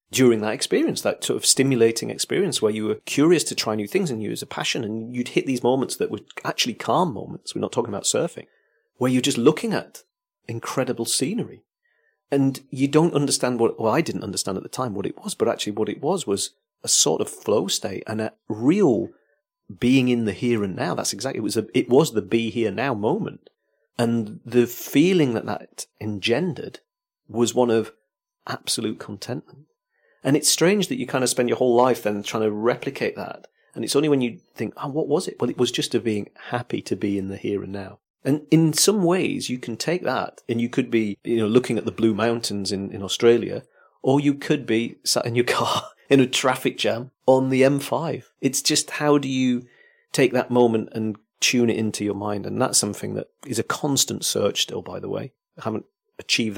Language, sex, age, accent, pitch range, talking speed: English, male, 40-59, British, 110-140 Hz, 220 wpm